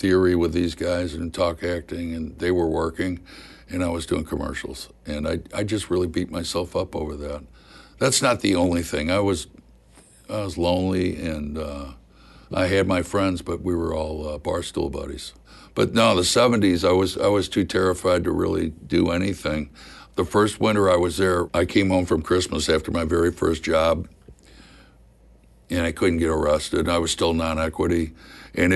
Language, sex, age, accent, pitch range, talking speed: English, male, 60-79, American, 75-90 Hz, 185 wpm